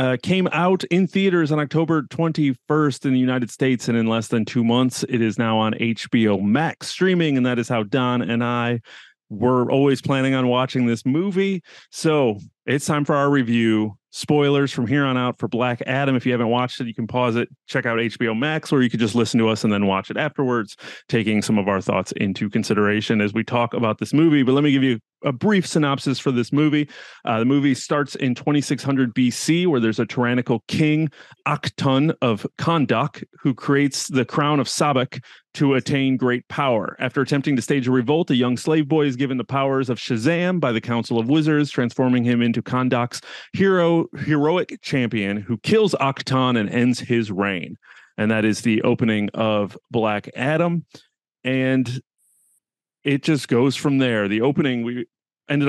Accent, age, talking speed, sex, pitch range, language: American, 30-49, 195 wpm, male, 120-145 Hz, English